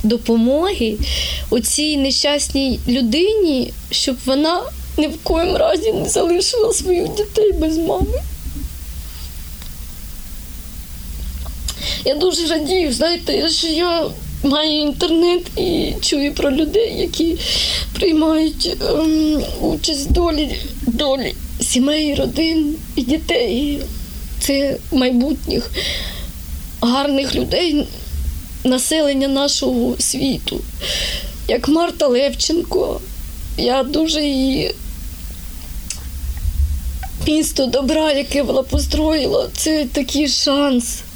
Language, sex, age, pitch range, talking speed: Ukrainian, female, 20-39, 245-320 Hz, 85 wpm